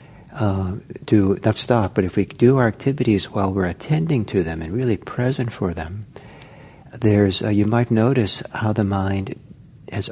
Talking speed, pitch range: 170 wpm, 95-115 Hz